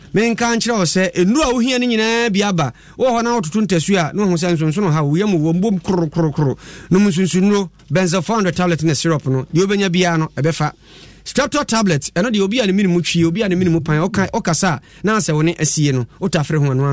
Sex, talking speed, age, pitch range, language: male, 195 wpm, 30-49, 155-205 Hz, English